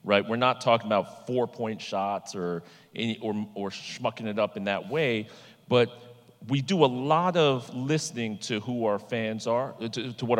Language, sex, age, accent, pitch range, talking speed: English, male, 40-59, American, 110-130 Hz, 185 wpm